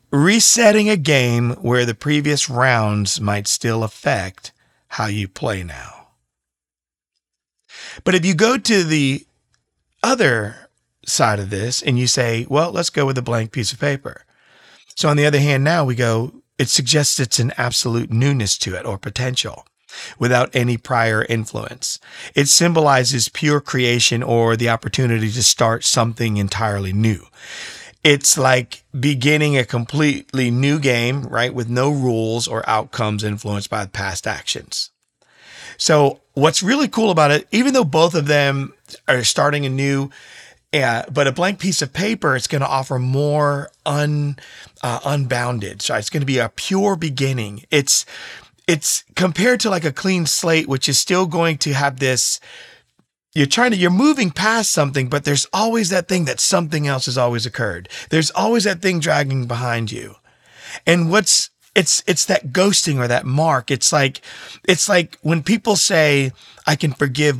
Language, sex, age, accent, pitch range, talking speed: English, male, 40-59, American, 120-155 Hz, 165 wpm